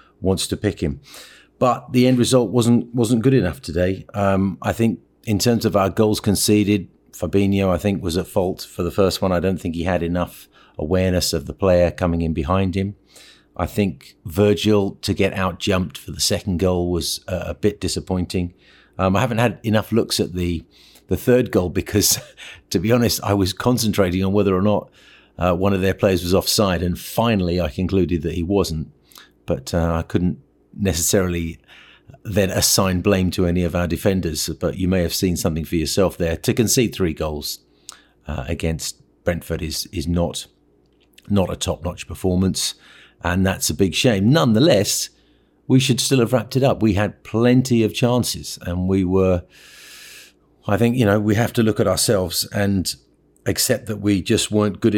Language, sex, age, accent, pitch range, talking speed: English, male, 40-59, British, 85-105 Hz, 190 wpm